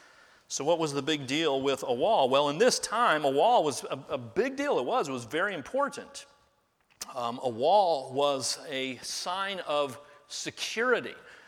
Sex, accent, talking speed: male, American, 180 wpm